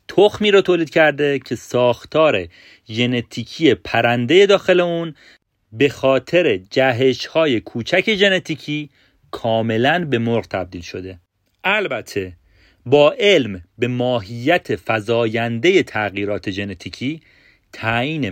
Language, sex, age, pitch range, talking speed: Persian, male, 40-59, 105-145 Hz, 100 wpm